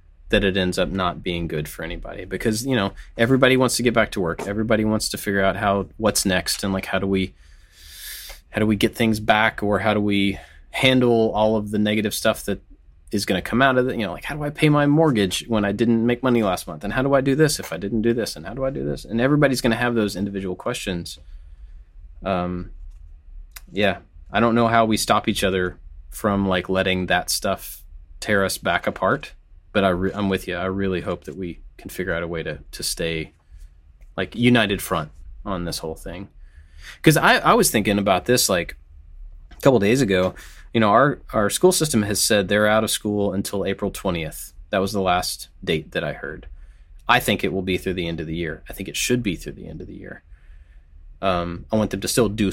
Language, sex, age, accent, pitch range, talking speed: English, male, 20-39, American, 80-110 Hz, 235 wpm